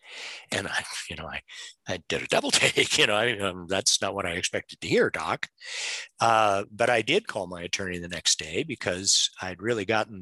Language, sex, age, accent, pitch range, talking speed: English, male, 50-69, American, 95-130 Hz, 210 wpm